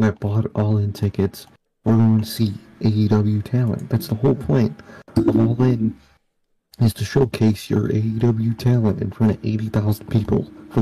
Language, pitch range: English, 105-125 Hz